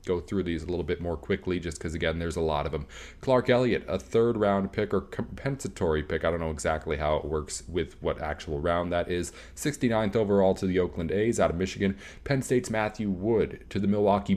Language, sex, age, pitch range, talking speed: English, male, 30-49, 95-115 Hz, 225 wpm